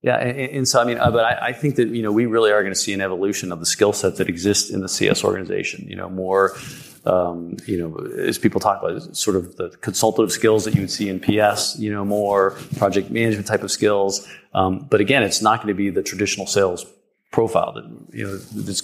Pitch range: 95-115 Hz